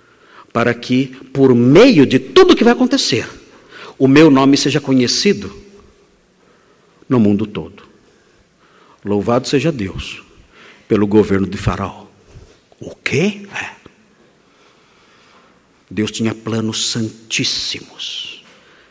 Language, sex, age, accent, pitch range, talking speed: Portuguese, male, 50-69, Brazilian, 115-160 Hz, 100 wpm